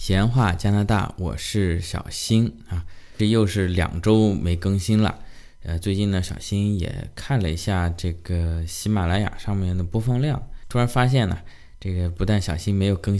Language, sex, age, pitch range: Chinese, male, 20-39, 85-110 Hz